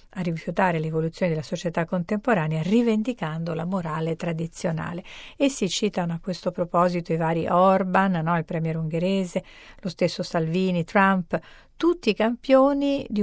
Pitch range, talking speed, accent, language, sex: 170-210 Hz, 135 wpm, native, Italian, female